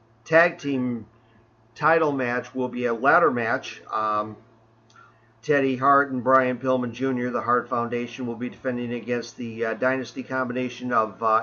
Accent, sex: American, male